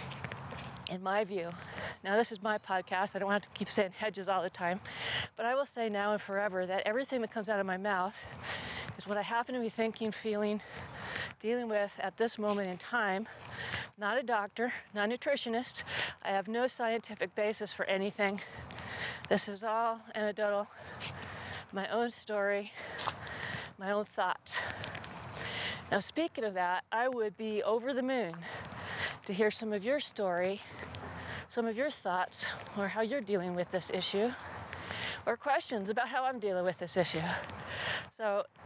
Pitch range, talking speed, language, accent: 195-230 Hz, 170 wpm, English, American